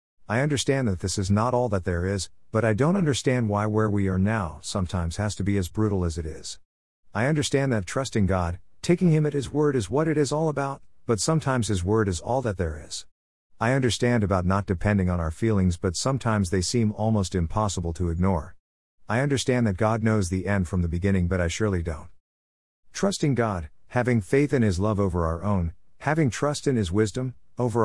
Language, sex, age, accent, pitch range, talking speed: English, male, 50-69, American, 90-120 Hz, 215 wpm